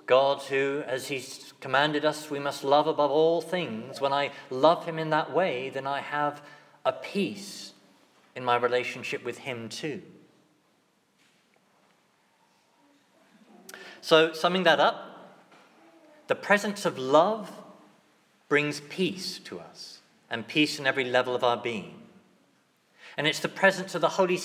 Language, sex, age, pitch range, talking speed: English, male, 50-69, 135-185 Hz, 140 wpm